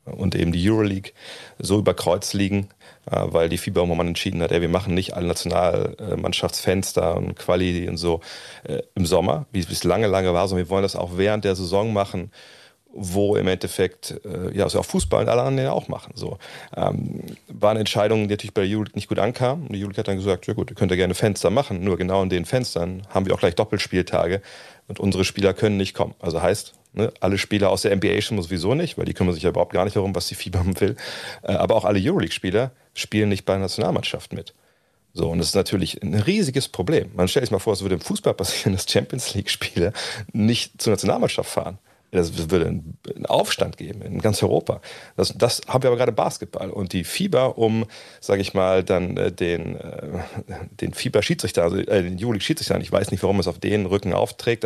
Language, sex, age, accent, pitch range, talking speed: German, male, 40-59, German, 90-105 Hz, 210 wpm